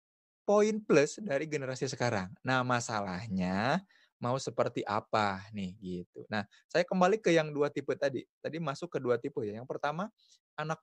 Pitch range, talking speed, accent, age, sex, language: 125-155 Hz, 155 wpm, native, 20-39, male, Indonesian